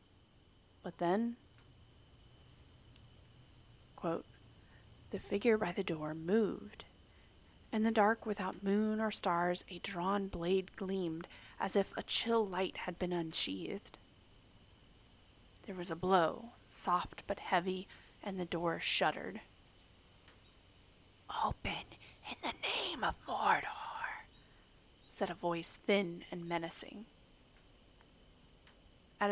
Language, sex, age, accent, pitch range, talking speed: English, female, 30-49, American, 125-205 Hz, 105 wpm